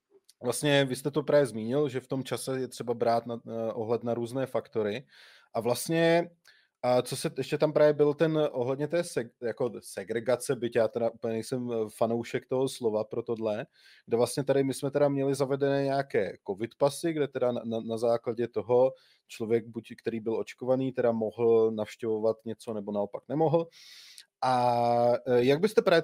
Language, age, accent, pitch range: Czech, 20-39, native, 115-140 Hz